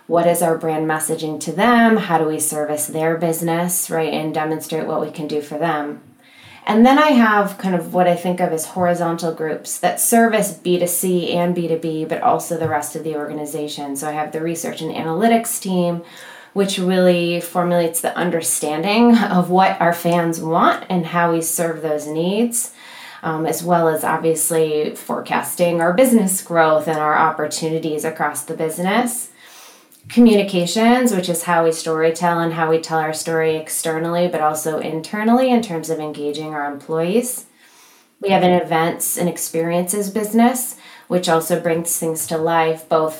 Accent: American